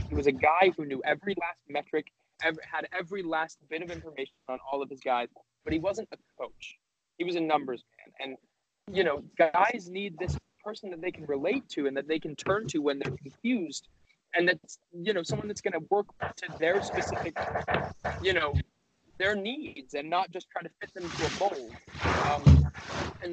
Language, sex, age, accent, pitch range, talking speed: English, male, 20-39, American, 140-190 Hz, 200 wpm